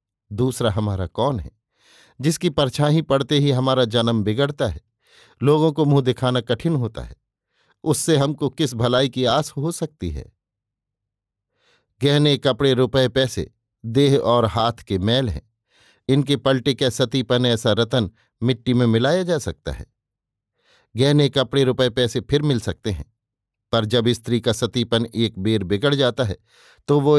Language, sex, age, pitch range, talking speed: Hindi, male, 50-69, 115-135 Hz, 155 wpm